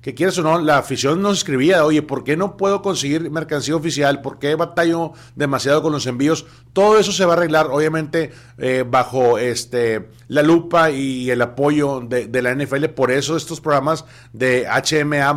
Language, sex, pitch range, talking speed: Spanish, male, 130-170 Hz, 185 wpm